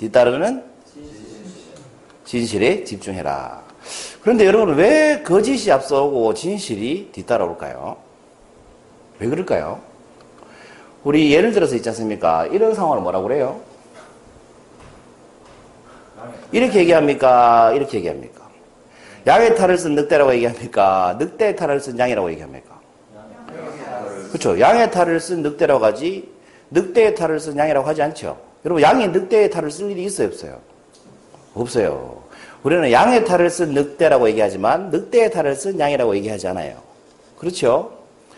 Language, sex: Korean, male